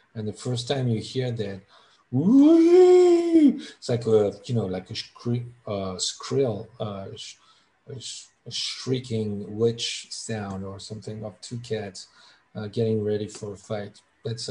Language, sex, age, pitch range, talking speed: English, male, 40-59, 105-120 Hz, 145 wpm